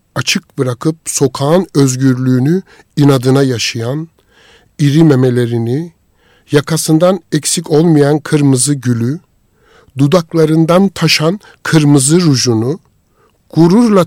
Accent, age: native, 60-79